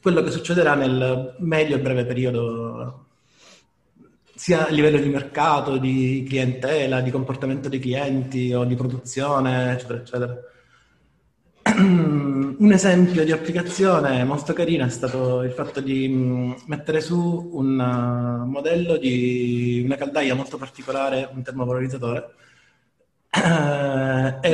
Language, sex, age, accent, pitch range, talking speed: Italian, male, 30-49, native, 125-155 Hz, 115 wpm